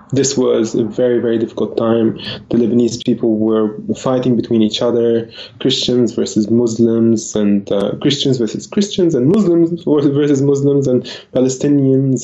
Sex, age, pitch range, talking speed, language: male, 20-39, 120-135 Hz, 140 wpm, English